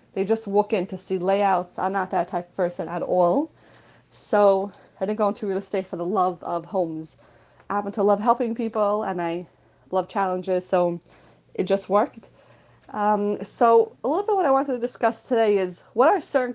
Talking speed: 205 wpm